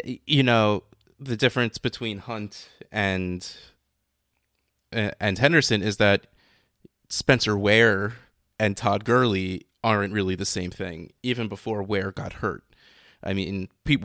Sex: male